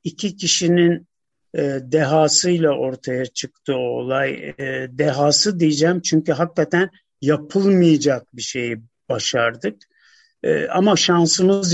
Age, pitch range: 50-69, 140-190 Hz